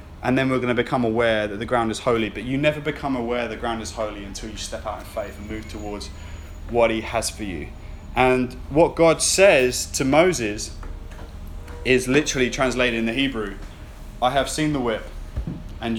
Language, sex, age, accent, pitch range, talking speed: English, male, 20-39, British, 95-125 Hz, 200 wpm